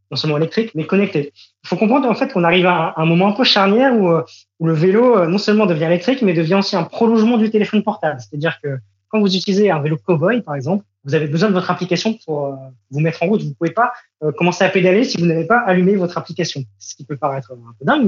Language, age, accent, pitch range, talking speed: French, 20-39, French, 150-195 Hz, 250 wpm